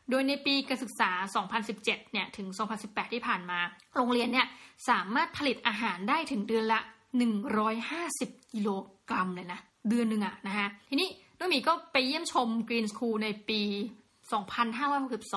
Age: 20-39